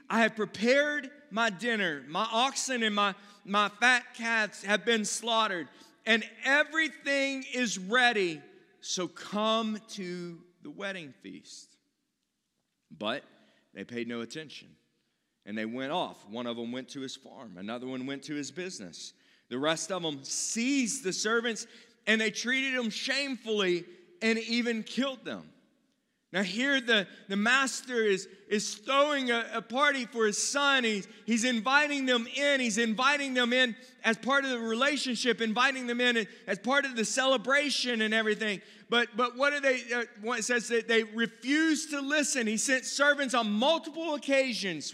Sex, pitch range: male, 205-265 Hz